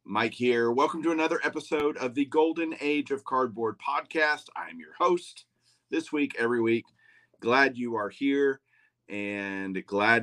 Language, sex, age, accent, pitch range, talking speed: English, male, 40-59, American, 95-130 Hz, 155 wpm